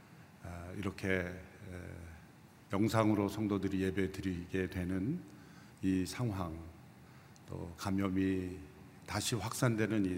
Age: 50-69